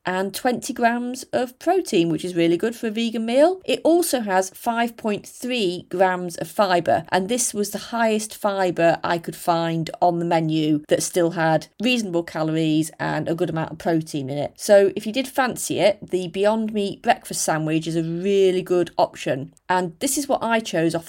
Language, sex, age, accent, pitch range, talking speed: English, female, 30-49, British, 175-230 Hz, 195 wpm